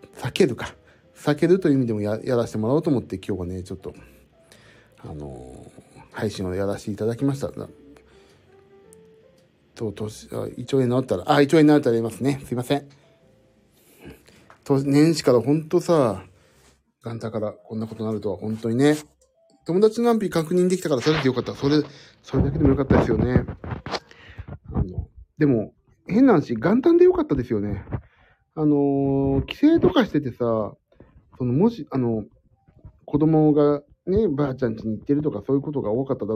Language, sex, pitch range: Japanese, male, 110-155 Hz